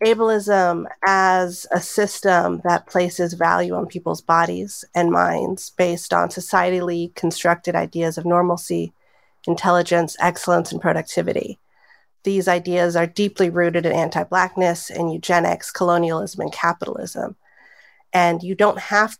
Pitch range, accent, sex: 170-190 Hz, American, female